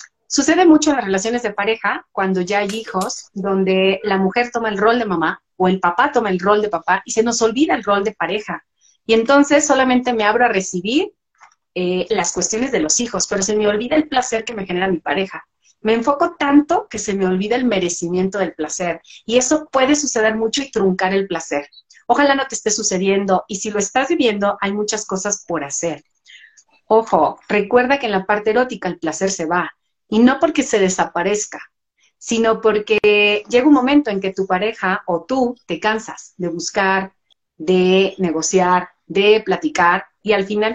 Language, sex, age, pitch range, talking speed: Spanish, female, 30-49, 185-240 Hz, 195 wpm